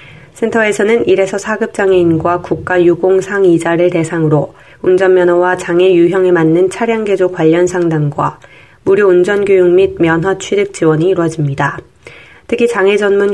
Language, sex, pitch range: Korean, female, 170-195 Hz